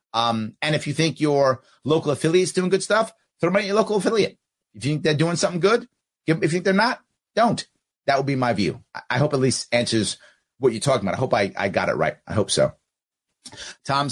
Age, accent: 30-49, American